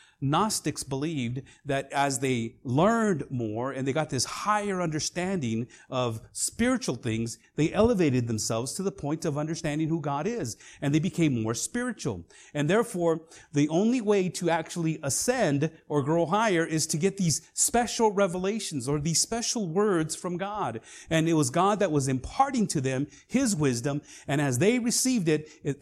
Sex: male